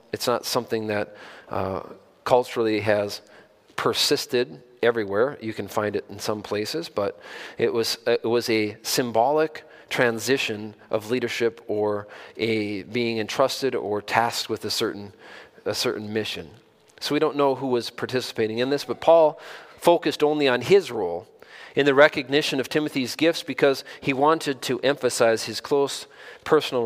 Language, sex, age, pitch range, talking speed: English, male, 40-59, 110-150 Hz, 150 wpm